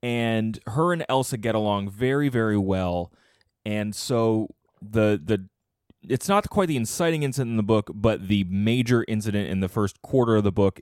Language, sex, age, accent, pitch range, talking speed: English, male, 20-39, American, 95-115 Hz, 185 wpm